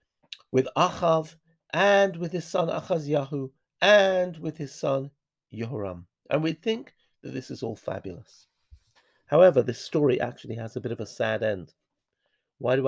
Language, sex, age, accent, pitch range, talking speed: English, male, 50-69, British, 115-155 Hz, 160 wpm